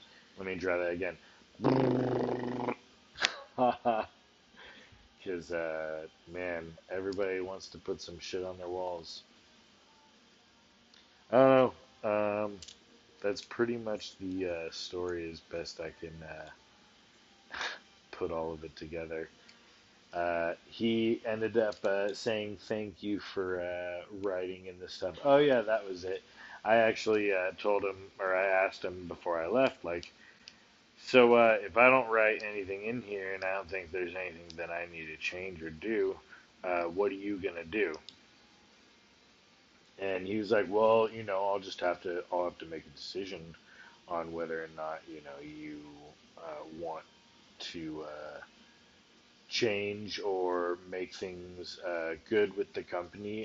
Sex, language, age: male, English, 30-49